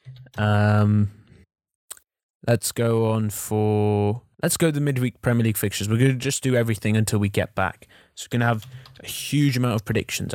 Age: 20-39